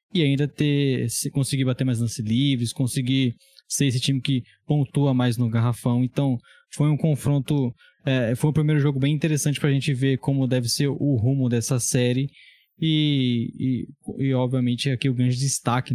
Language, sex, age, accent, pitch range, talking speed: Portuguese, male, 10-29, Brazilian, 125-145 Hz, 175 wpm